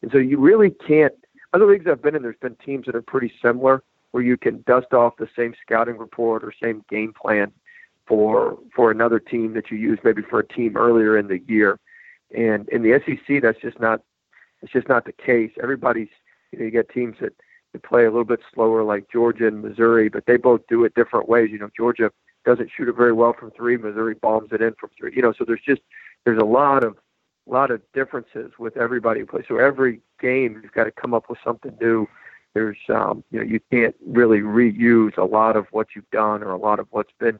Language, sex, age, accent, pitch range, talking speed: English, male, 40-59, American, 110-125 Hz, 235 wpm